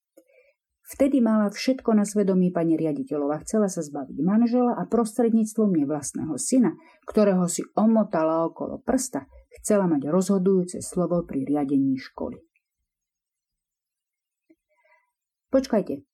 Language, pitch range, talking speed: Slovak, 175-245 Hz, 105 wpm